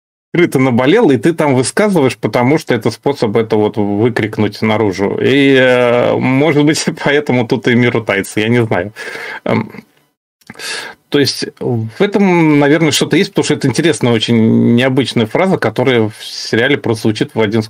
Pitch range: 110-140 Hz